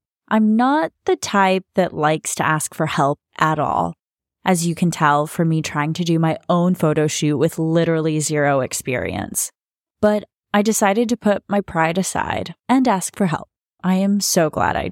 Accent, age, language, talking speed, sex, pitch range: American, 10-29, English, 185 wpm, female, 160-200 Hz